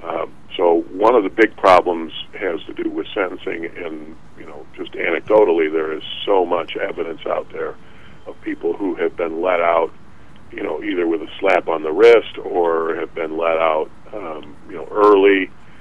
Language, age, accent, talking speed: English, 50-69, American, 185 wpm